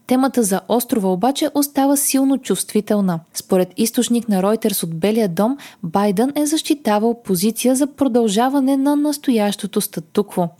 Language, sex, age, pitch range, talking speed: Bulgarian, female, 20-39, 190-265 Hz, 130 wpm